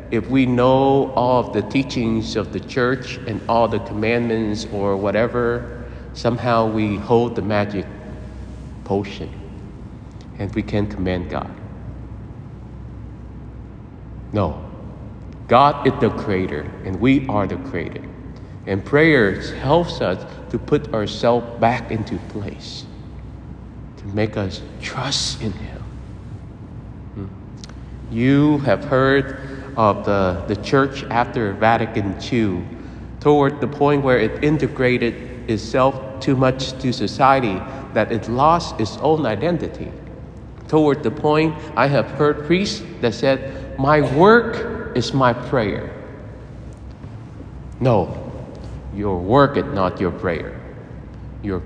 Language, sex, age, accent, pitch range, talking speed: English, male, 50-69, American, 105-135 Hz, 120 wpm